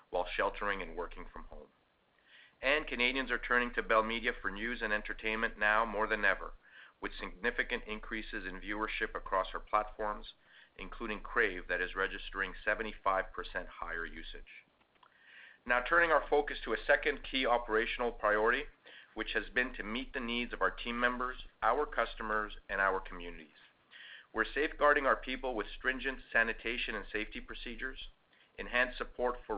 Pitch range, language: 105-125 Hz, English